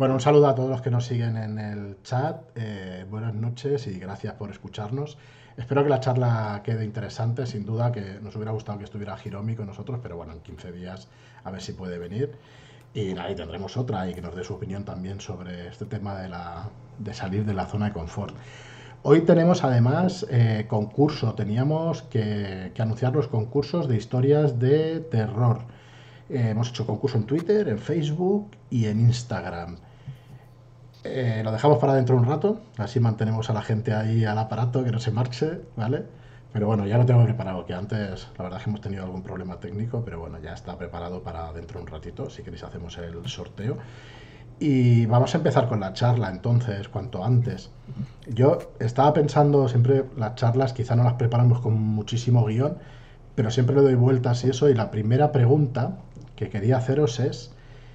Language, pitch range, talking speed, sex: Spanish, 105-130 Hz, 190 wpm, male